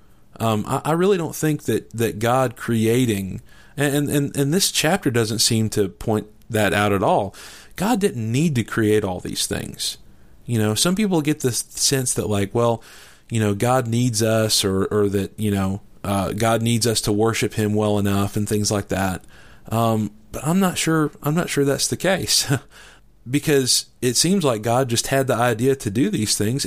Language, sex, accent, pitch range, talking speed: English, male, American, 105-145 Hz, 200 wpm